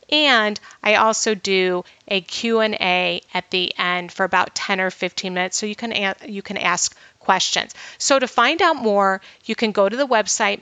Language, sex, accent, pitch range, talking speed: English, female, American, 190-230 Hz, 190 wpm